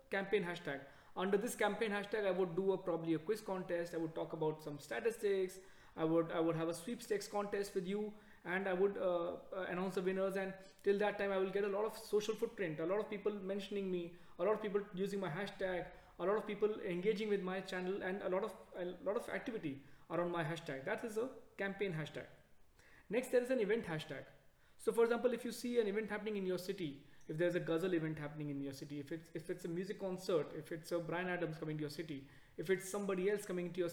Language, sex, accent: English, male, Indian